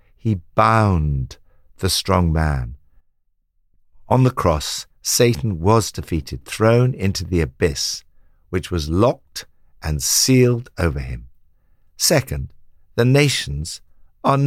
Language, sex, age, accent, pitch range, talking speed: English, male, 60-79, British, 80-115 Hz, 110 wpm